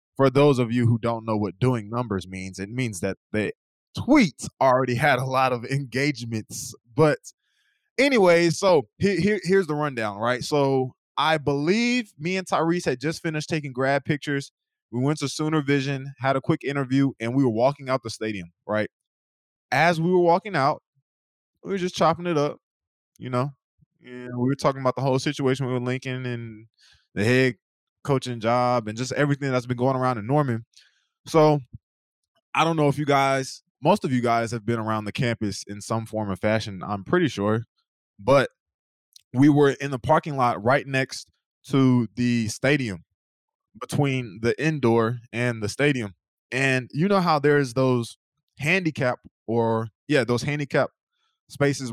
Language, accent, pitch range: English, American, 120-150 Hz